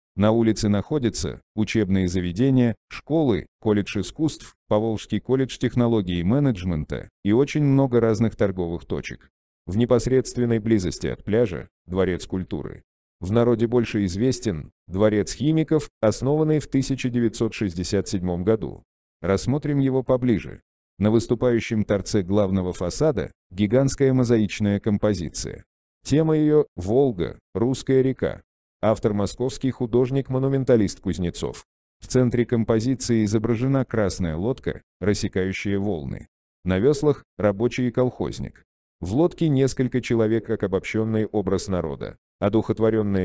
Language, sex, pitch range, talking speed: Russian, male, 95-125 Hz, 110 wpm